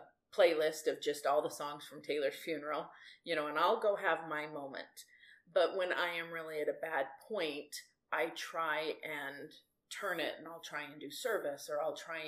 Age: 30-49